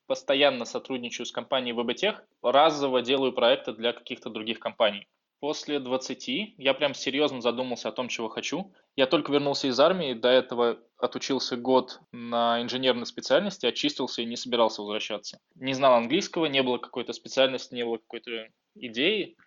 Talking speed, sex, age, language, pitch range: 155 wpm, male, 20-39, Russian, 120-150 Hz